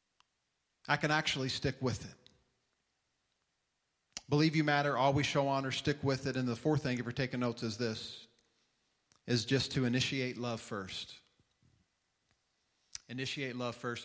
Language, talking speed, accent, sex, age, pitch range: English, 145 wpm, American, male, 40-59, 125-155 Hz